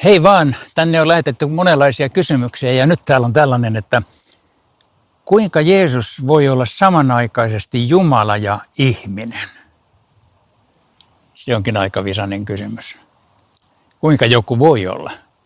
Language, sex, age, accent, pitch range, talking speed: Finnish, male, 60-79, native, 110-155 Hz, 115 wpm